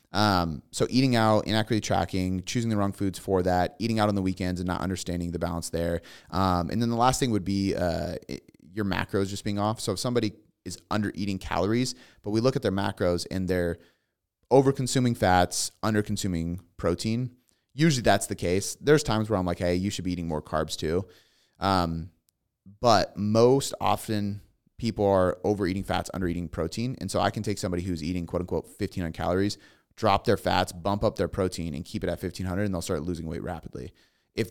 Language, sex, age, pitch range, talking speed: English, male, 30-49, 90-105 Hz, 205 wpm